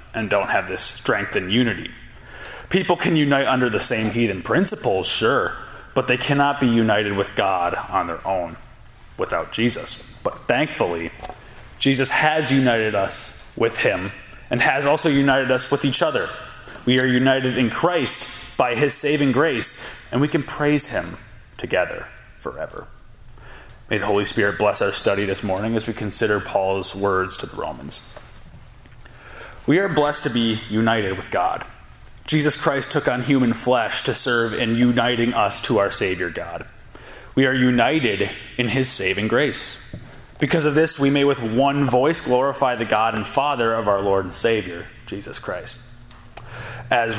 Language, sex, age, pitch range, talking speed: English, male, 30-49, 115-135 Hz, 165 wpm